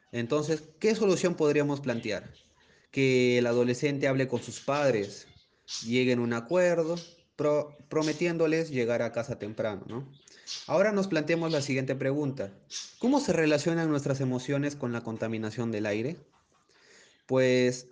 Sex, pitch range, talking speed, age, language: male, 115-145 Hz, 135 wpm, 30-49, Spanish